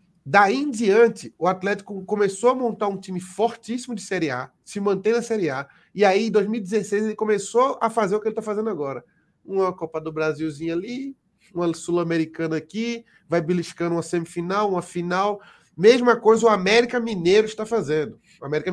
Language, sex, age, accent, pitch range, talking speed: Portuguese, male, 30-49, Brazilian, 175-225 Hz, 180 wpm